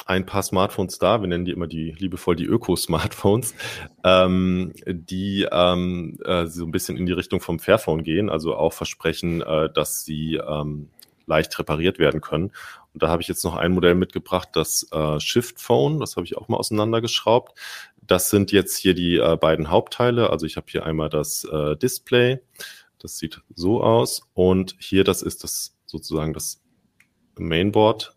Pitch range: 85-100 Hz